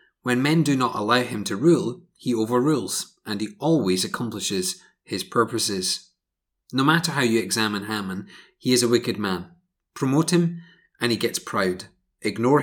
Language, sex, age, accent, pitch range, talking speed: English, male, 30-49, British, 110-140 Hz, 160 wpm